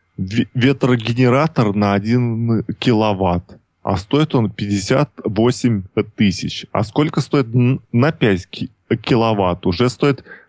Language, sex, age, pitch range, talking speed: Russian, male, 20-39, 105-135 Hz, 95 wpm